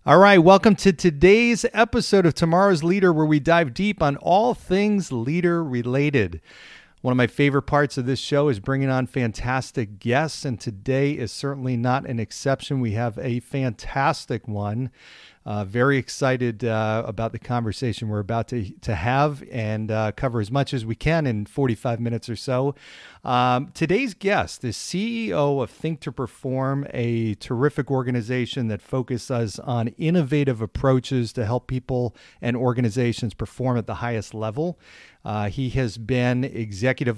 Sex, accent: male, American